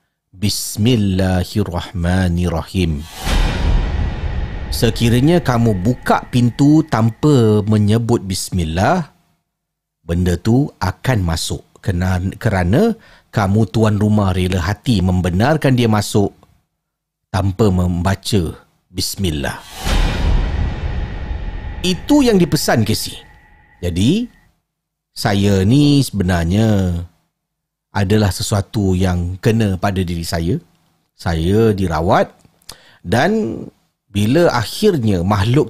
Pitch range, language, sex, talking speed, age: 90-125 Hz, Malay, male, 75 wpm, 40-59